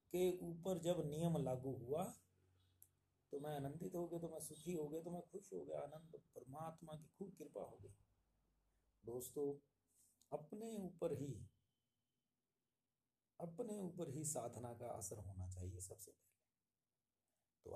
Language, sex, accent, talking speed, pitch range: Hindi, male, native, 130 wpm, 105-150 Hz